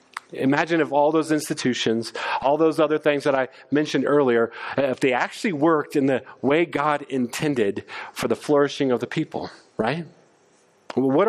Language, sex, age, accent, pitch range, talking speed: English, male, 40-59, American, 150-205 Hz, 160 wpm